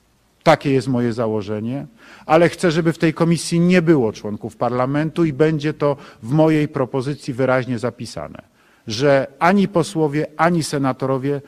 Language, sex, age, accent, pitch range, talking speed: Polish, male, 50-69, native, 125-155 Hz, 140 wpm